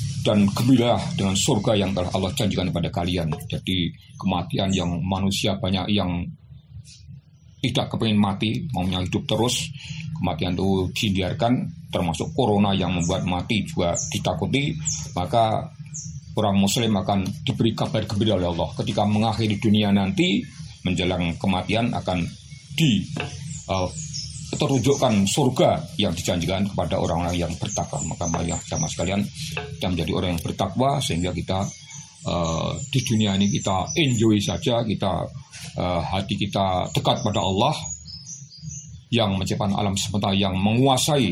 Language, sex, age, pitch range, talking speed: Indonesian, male, 40-59, 90-125 Hz, 130 wpm